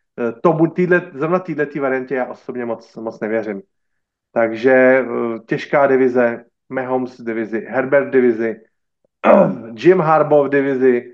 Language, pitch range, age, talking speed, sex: Slovak, 125-145 Hz, 30-49, 110 wpm, male